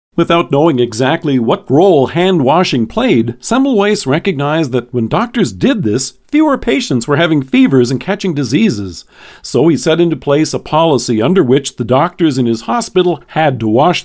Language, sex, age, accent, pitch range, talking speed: English, male, 50-69, American, 125-185 Hz, 165 wpm